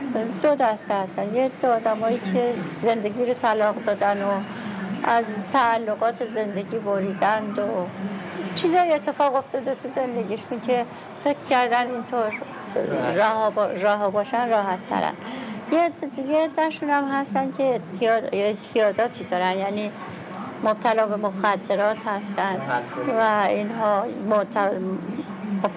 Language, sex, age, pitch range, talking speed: Persian, female, 60-79, 210-250 Hz, 60 wpm